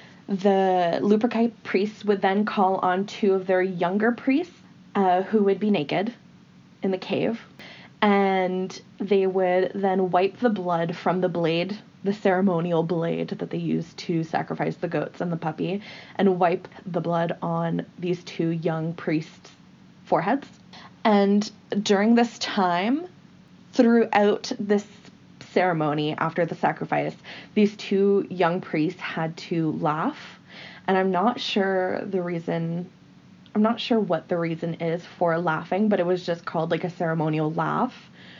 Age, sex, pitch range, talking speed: 20-39, female, 170-200 Hz, 145 wpm